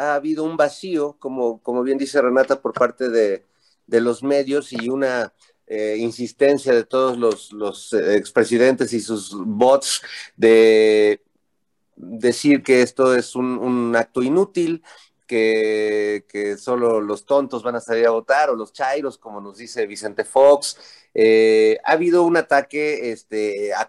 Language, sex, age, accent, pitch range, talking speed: Spanish, male, 30-49, Mexican, 115-145 Hz, 155 wpm